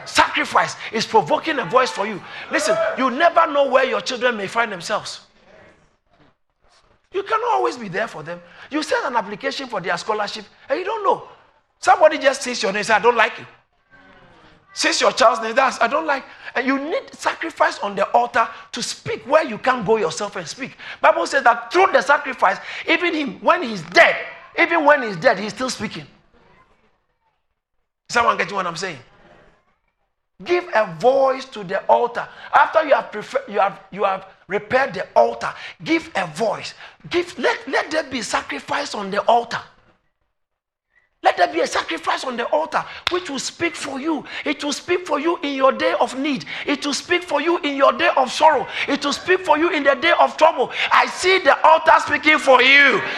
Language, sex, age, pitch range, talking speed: English, male, 50-69, 230-320 Hz, 195 wpm